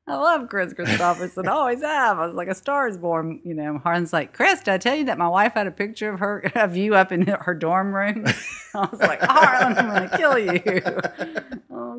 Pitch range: 145-180 Hz